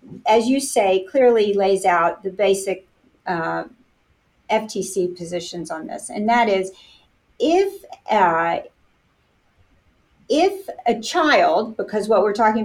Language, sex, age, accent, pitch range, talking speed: English, female, 50-69, American, 190-255 Hz, 120 wpm